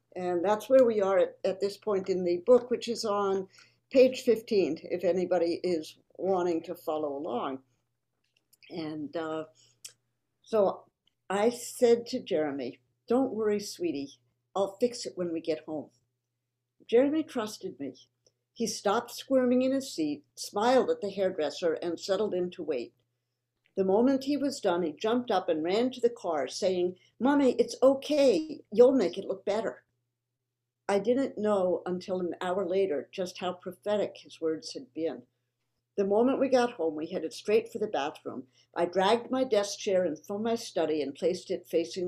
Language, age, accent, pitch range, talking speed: English, 60-79, American, 160-235 Hz, 170 wpm